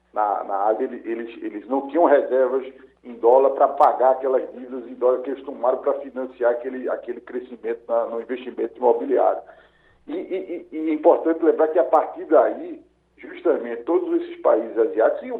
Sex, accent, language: male, Brazilian, Portuguese